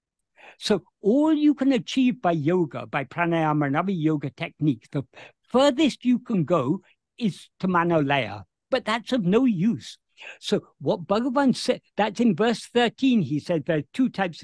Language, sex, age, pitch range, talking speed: English, male, 60-79, 150-230 Hz, 165 wpm